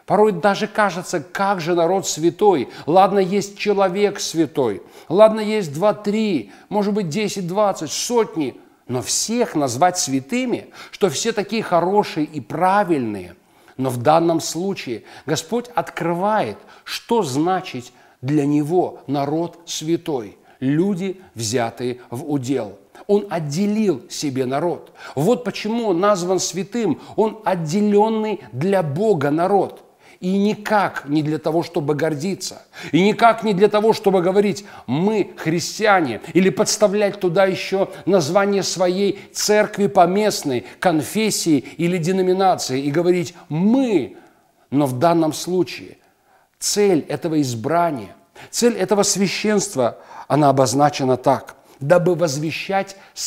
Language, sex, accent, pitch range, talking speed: Russian, male, native, 150-205 Hz, 115 wpm